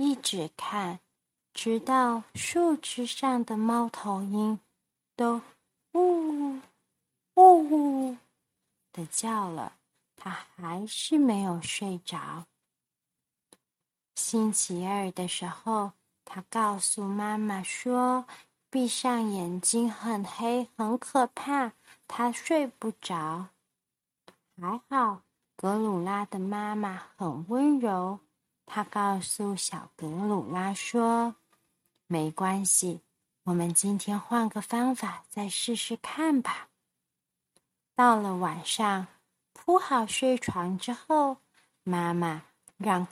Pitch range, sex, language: 180-245 Hz, female, Chinese